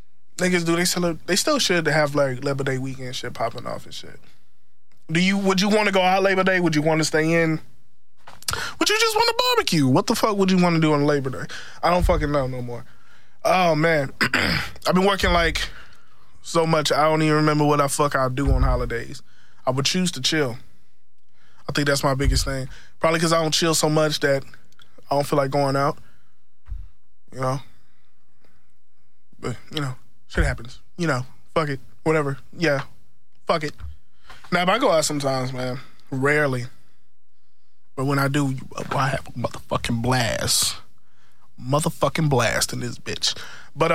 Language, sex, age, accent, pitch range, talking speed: English, male, 20-39, American, 130-165 Hz, 190 wpm